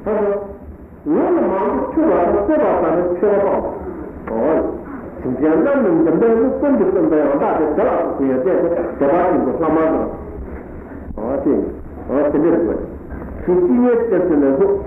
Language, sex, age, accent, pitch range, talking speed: Italian, male, 60-79, Indian, 175-295 Hz, 115 wpm